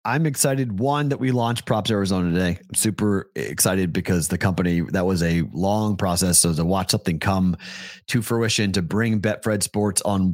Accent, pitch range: American, 90-105 Hz